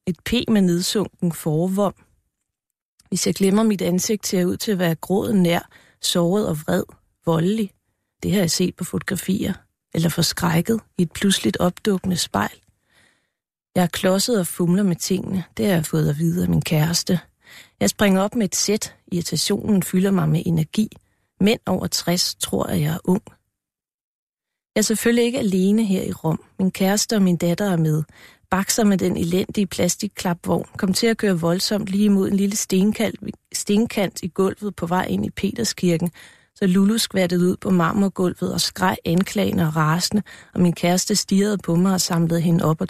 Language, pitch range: Danish, 170-200 Hz